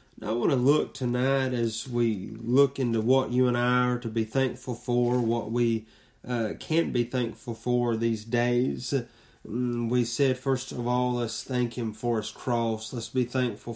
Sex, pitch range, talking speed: male, 115-130 Hz, 180 wpm